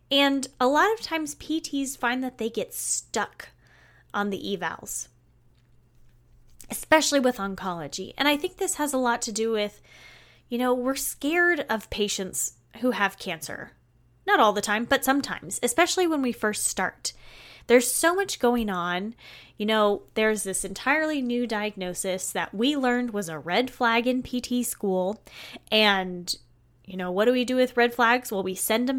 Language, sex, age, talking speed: English, female, 10-29, 170 wpm